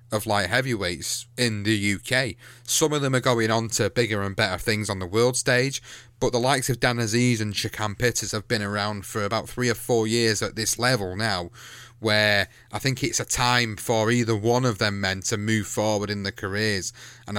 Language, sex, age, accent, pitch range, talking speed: English, male, 30-49, British, 105-125 Hz, 215 wpm